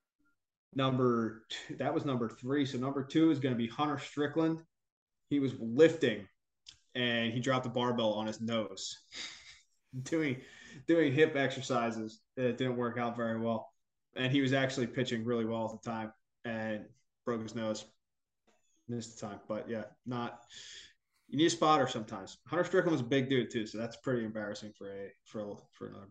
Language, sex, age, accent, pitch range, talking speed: English, male, 20-39, American, 115-140 Hz, 180 wpm